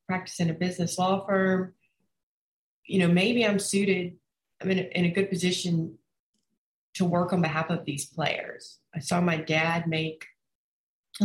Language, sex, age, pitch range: English, female, 30-49, 165-195 Hz